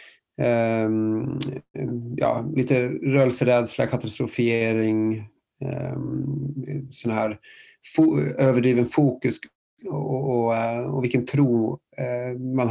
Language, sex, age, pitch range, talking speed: Swedish, male, 30-49, 120-140 Hz, 85 wpm